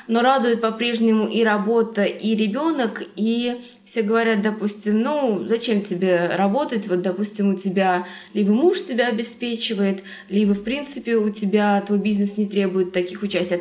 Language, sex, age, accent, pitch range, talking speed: Russian, female, 20-39, native, 190-225 Hz, 155 wpm